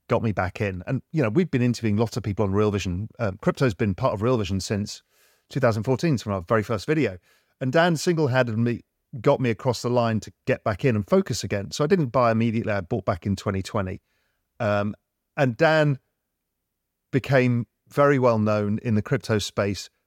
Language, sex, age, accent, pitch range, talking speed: English, male, 40-59, British, 100-130 Hz, 200 wpm